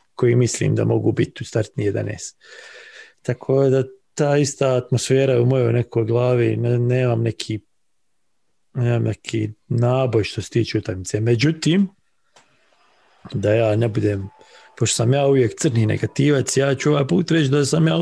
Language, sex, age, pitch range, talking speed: English, male, 40-59, 120-150 Hz, 155 wpm